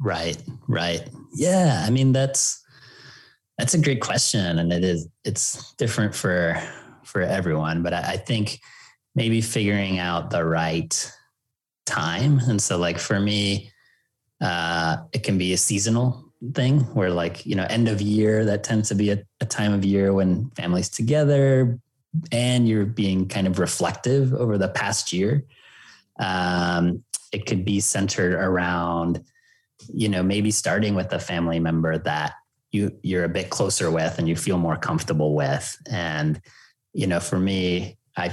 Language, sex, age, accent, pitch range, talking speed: English, male, 20-39, American, 90-120 Hz, 160 wpm